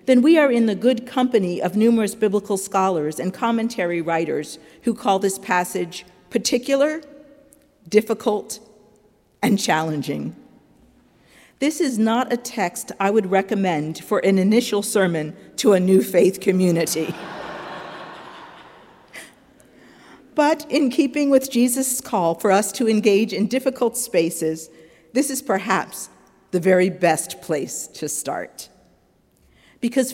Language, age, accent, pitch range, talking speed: English, 50-69, American, 180-235 Hz, 125 wpm